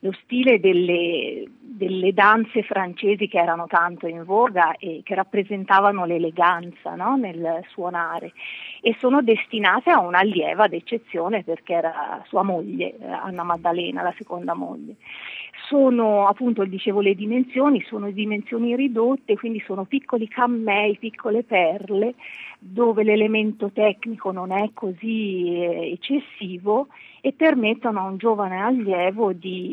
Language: Italian